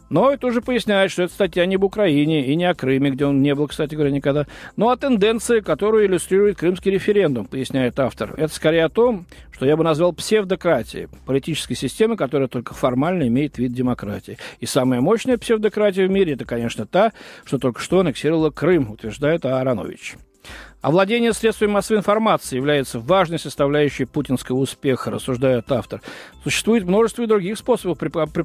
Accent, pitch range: native, 135-195 Hz